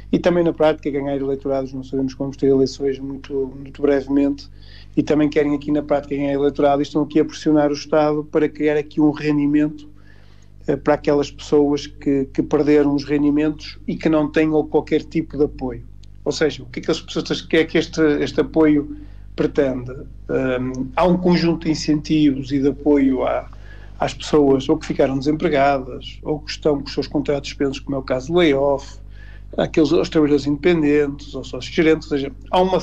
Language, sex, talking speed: Portuguese, male, 190 wpm